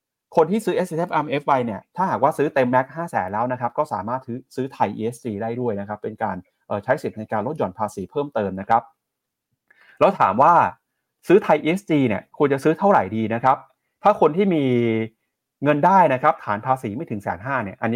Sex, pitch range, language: male, 110-145 Hz, Thai